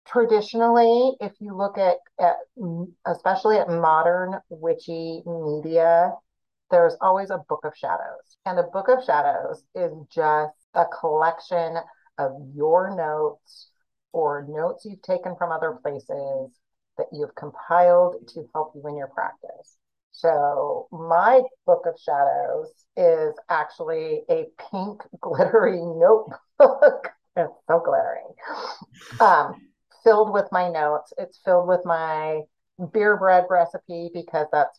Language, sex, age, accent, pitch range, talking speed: English, female, 40-59, American, 155-210 Hz, 130 wpm